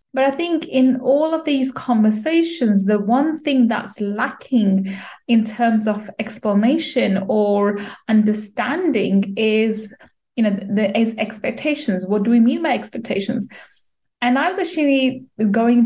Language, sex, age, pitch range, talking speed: English, female, 30-49, 205-255 Hz, 135 wpm